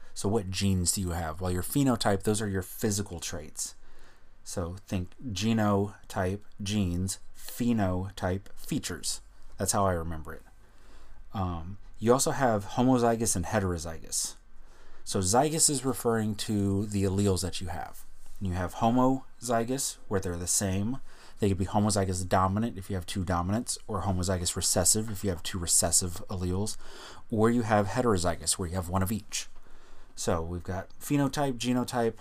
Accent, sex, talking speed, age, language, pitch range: American, male, 155 wpm, 30-49, English, 95-115 Hz